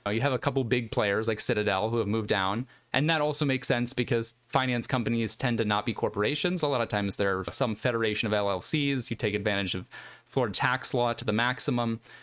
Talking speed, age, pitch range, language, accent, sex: 220 wpm, 20-39, 115-135 Hz, English, American, male